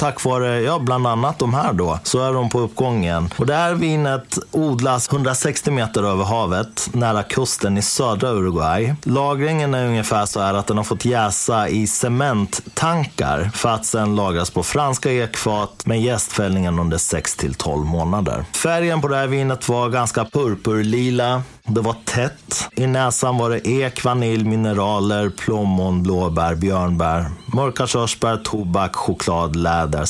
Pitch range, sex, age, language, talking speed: 95-130 Hz, male, 30-49, Swedish, 155 wpm